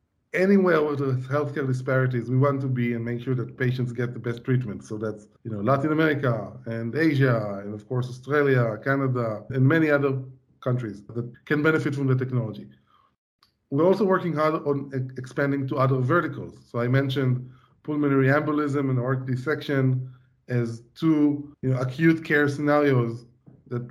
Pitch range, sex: 120-150 Hz, male